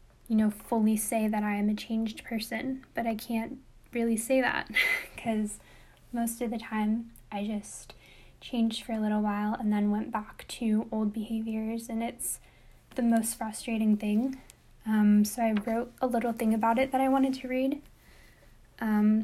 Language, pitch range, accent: English, 215-240 Hz, American